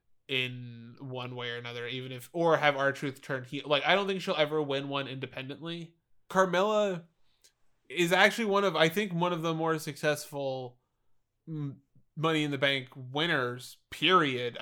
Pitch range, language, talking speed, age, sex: 125-150 Hz, English, 165 wpm, 20-39, male